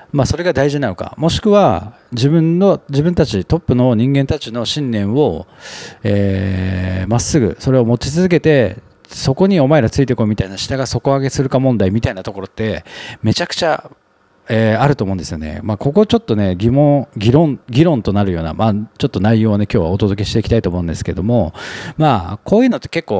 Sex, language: male, Japanese